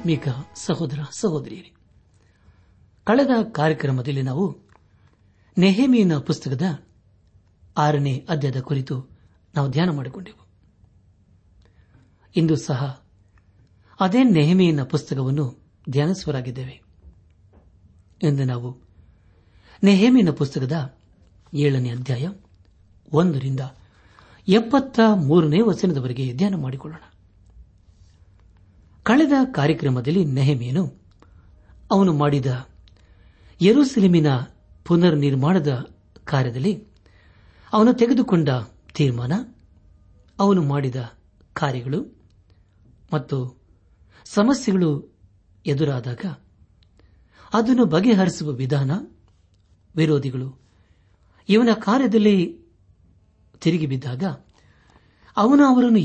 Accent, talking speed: native, 65 wpm